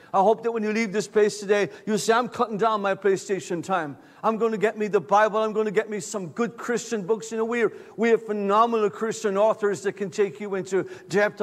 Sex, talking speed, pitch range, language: male, 250 wpm, 210-285 Hz, English